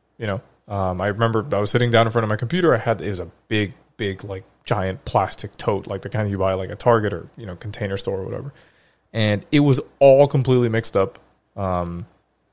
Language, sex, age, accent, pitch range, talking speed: English, male, 20-39, American, 100-120 Hz, 235 wpm